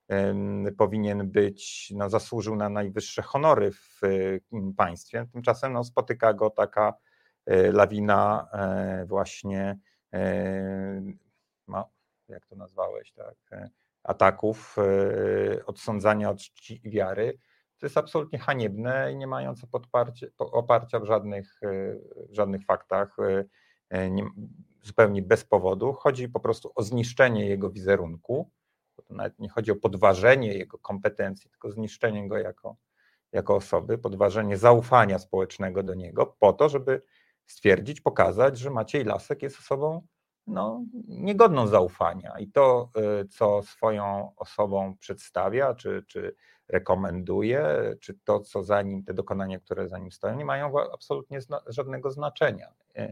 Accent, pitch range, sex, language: native, 100-140 Hz, male, Polish